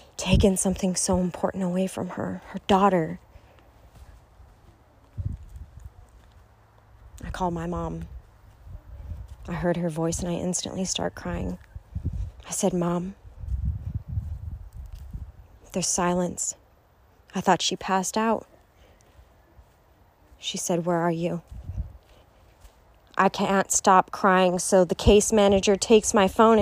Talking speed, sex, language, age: 110 wpm, female, English, 30-49